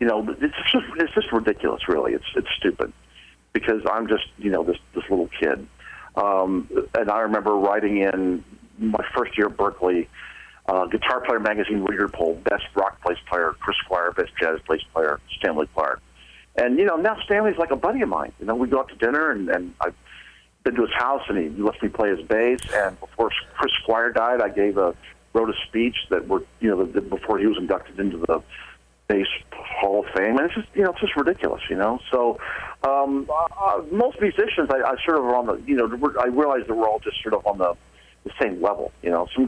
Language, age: English, 50-69